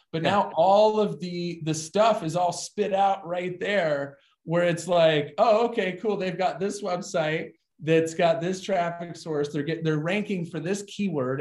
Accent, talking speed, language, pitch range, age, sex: American, 180 wpm, English, 145-190 Hz, 30-49, male